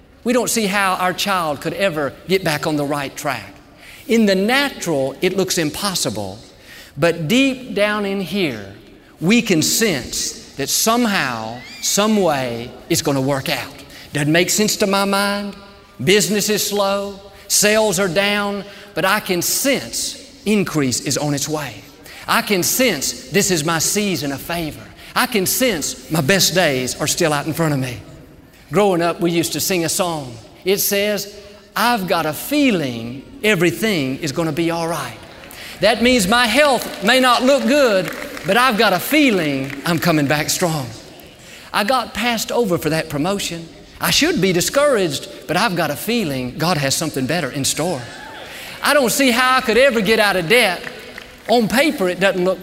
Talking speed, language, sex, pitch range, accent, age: 180 wpm, English, male, 150-215 Hz, American, 50-69